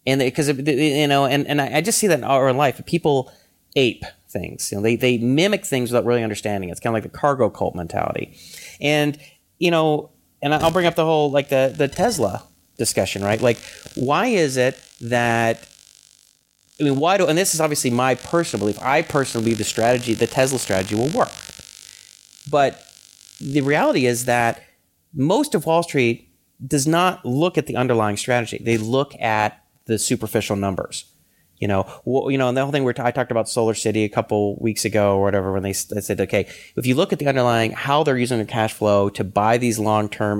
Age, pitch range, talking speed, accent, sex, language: 30-49, 105-140 Hz, 210 wpm, American, male, English